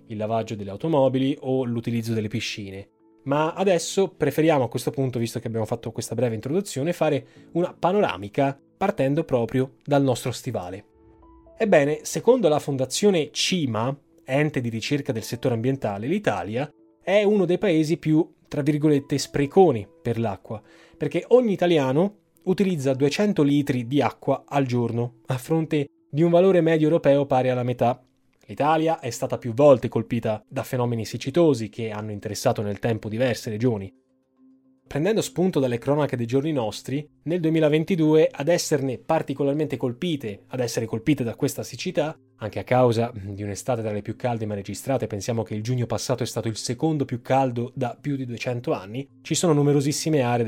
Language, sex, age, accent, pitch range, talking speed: Italian, male, 20-39, native, 115-155 Hz, 165 wpm